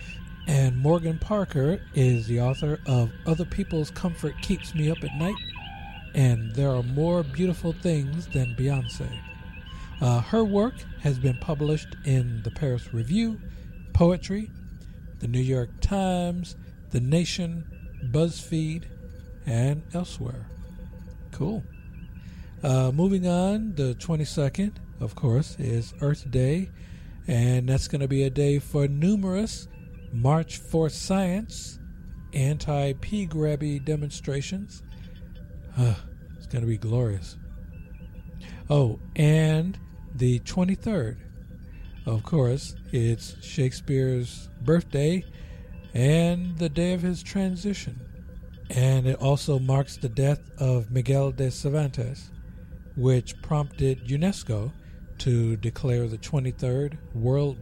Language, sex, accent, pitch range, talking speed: English, male, American, 115-160 Hz, 110 wpm